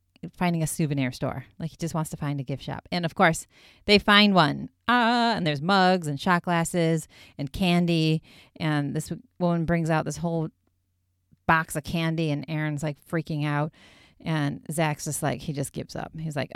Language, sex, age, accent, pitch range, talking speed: English, female, 30-49, American, 145-170 Hz, 190 wpm